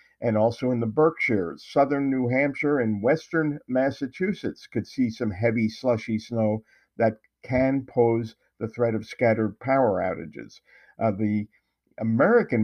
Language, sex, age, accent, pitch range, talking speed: English, male, 50-69, American, 110-130 Hz, 140 wpm